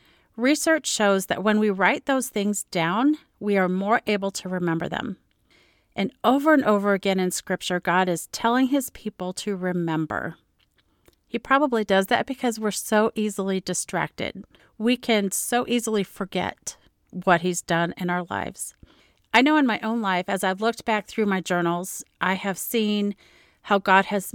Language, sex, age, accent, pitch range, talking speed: English, female, 40-59, American, 185-230 Hz, 170 wpm